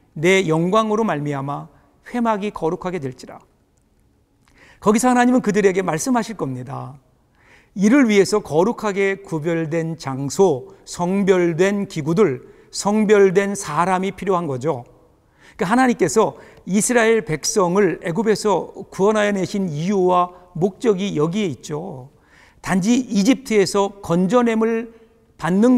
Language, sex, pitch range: Korean, male, 170-225 Hz